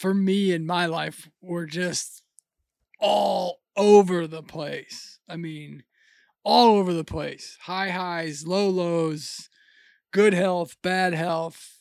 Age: 20-39